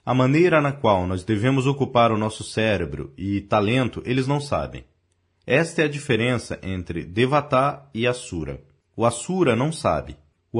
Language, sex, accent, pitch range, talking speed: Portuguese, male, Brazilian, 90-140 Hz, 160 wpm